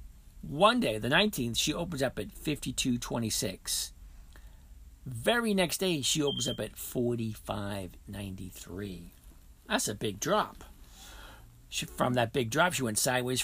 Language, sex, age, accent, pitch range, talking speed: English, male, 50-69, American, 90-125 Hz, 130 wpm